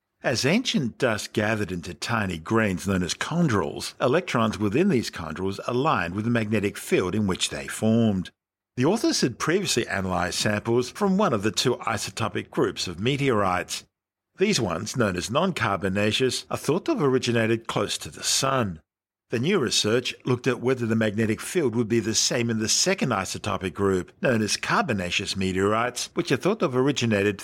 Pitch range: 100-135 Hz